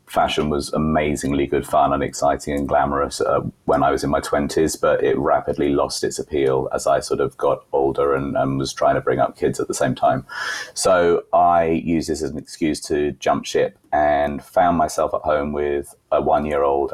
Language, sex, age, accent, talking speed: English, male, 30-49, British, 205 wpm